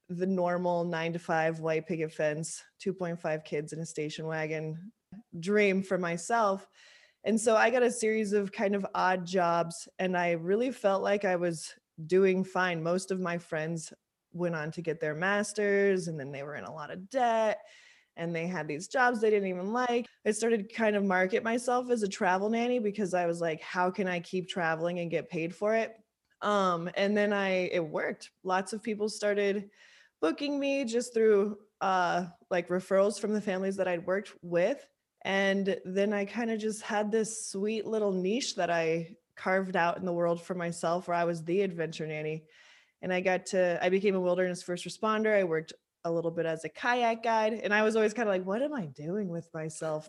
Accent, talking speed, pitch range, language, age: American, 205 wpm, 170-215 Hz, English, 20-39